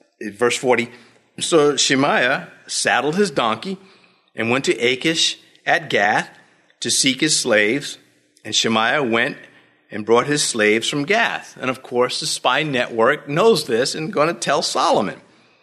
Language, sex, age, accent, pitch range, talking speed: English, male, 50-69, American, 115-180 Hz, 150 wpm